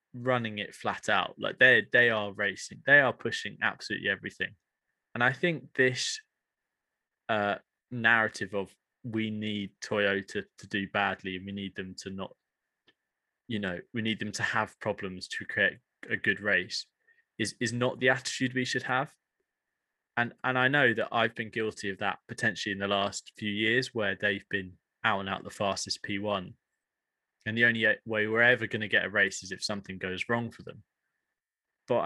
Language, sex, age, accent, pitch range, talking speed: English, male, 20-39, British, 105-140 Hz, 185 wpm